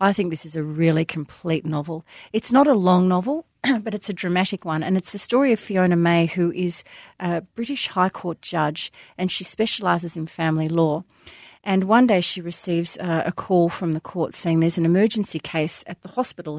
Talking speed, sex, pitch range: 205 wpm, female, 160-190 Hz